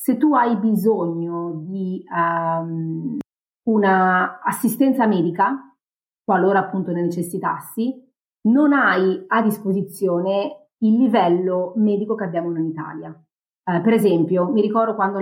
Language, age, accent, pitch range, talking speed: Italian, 30-49, native, 175-215 Hz, 115 wpm